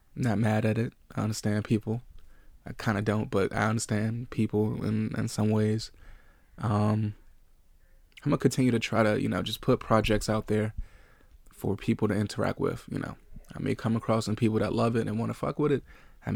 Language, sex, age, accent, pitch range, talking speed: English, male, 20-39, American, 105-115 Hz, 215 wpm